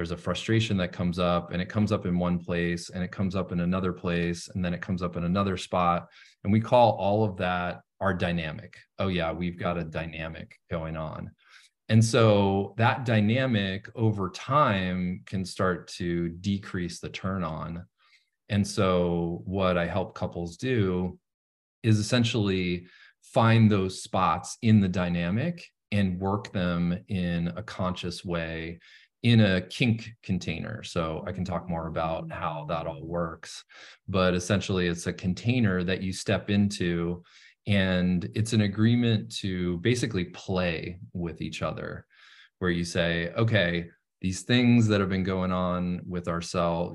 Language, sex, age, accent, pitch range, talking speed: English, male, 30-49, American, 85-100 Hz, 160 wpm